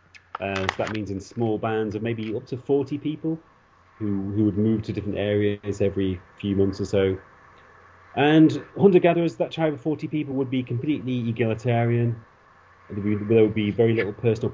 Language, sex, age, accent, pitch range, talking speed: English, male, 30-49, British, 105-125 Hz, 180 wpm